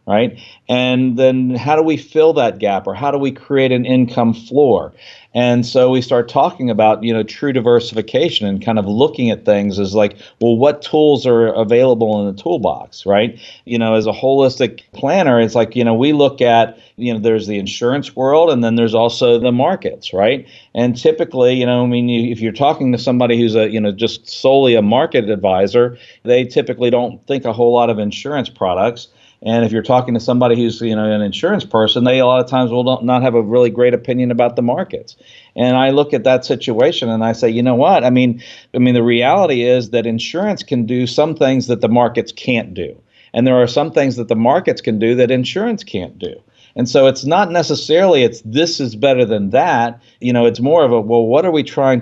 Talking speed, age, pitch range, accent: 225 wpm, 40-59, 115-130 Hz, American